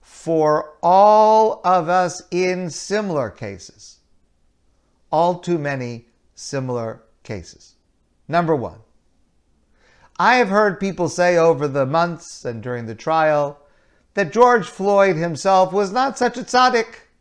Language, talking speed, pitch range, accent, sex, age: English, 120 wpm, 130-195 Hz, American, male, 50-69